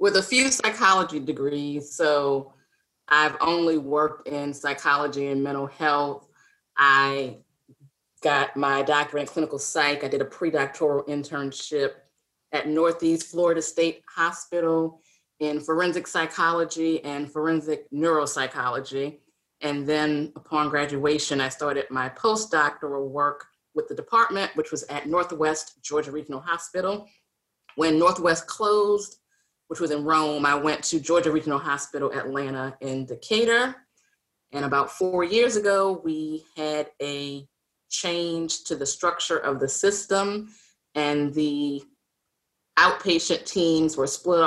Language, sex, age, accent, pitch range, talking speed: English, female, 30-49, American, 145-175 Hz, 125 wpm